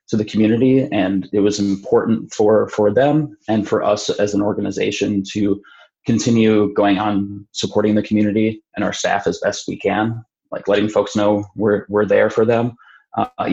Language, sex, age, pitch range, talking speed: English, male, 20-39, 105-115 Hz, 180 wpm